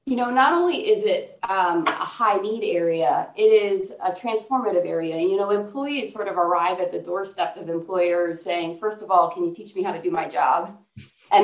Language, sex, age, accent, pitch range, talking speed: English, female, 30-49, American, 175-235 Hz, 215 wpm